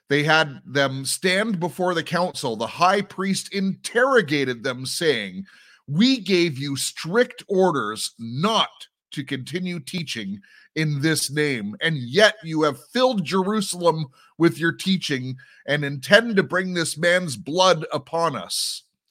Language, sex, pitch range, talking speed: English, male, 150-195 Hz, 135 wpm